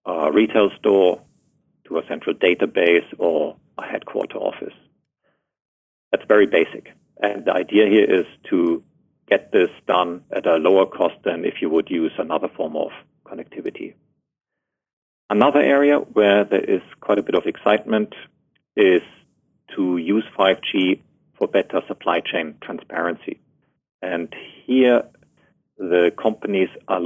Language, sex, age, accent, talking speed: English, male, 50-69, German, 135 wpm